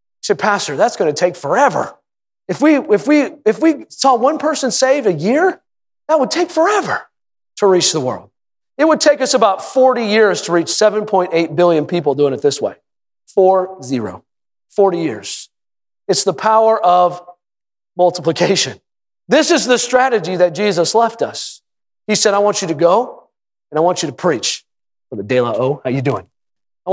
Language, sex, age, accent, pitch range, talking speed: English, male, 40-59, American, 180-260 Hz, 185 wpm